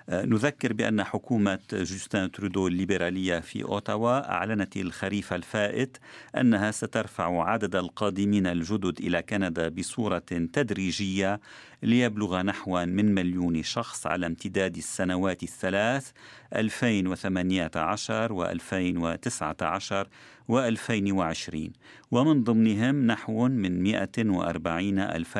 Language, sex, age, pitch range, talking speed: Arabic, male, 50-69, 90-110 Hz, 90 wpm